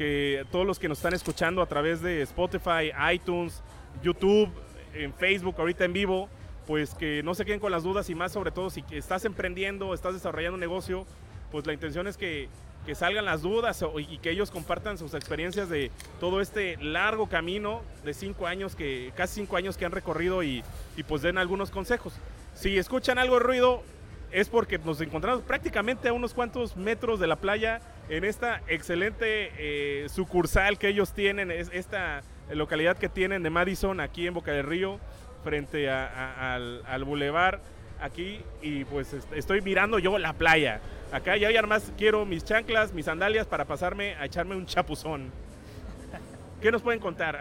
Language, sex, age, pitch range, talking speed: Spanish, male, 30-49, 155-200 Hz, 180 wpm